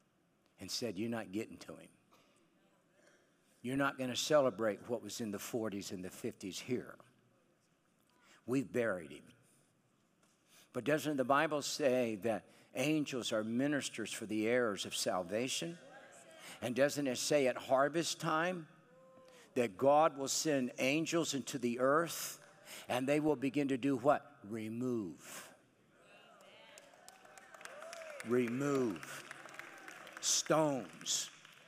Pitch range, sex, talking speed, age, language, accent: 120-165 Hz, male, 115 wpm, 60-79, English, American